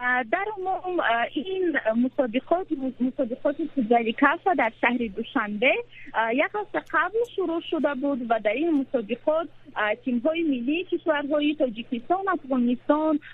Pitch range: 250-325 Hz